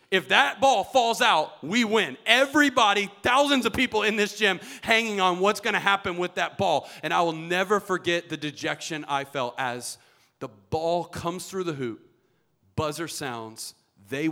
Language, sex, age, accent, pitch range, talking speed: English, male, 40-59, American, 125-175 Hz, 175 wpm